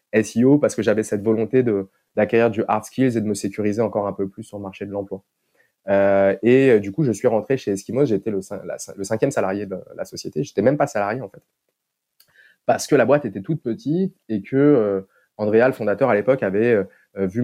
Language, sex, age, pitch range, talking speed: French, male, 20-39, 100-125 Hz, 230 wpm